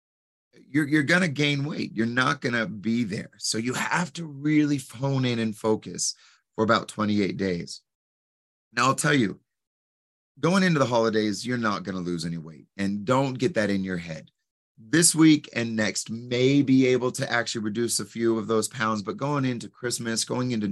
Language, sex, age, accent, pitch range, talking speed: English, male, 30-49, American, 100-125 Hz, 195 wpm